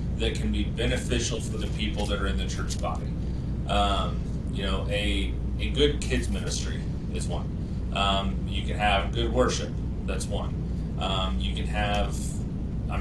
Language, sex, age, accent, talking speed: English, male, 30-49, American, 165 wpm